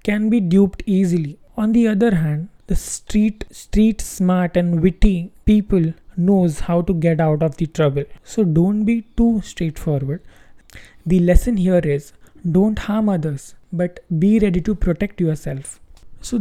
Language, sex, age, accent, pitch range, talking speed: English, male, 20-39, Indian, 165-195 Hz, 155 wpm